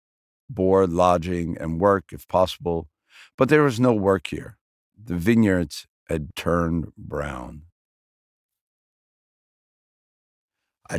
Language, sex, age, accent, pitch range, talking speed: Dutch, male, 50-69, American, 80-105 Hz, 100 wpm